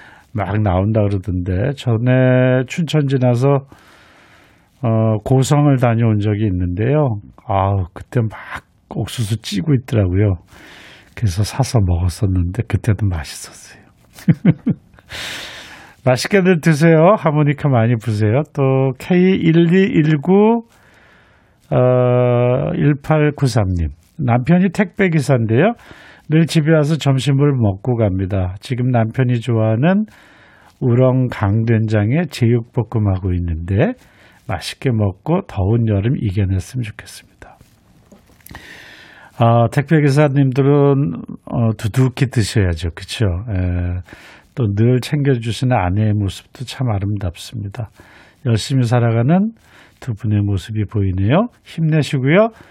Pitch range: 105-140 Hz